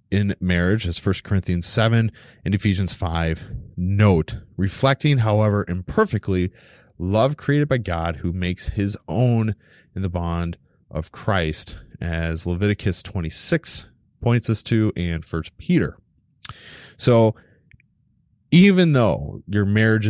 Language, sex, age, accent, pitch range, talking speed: English, male, 30-49, American, 85-110 Hz, 120 wpm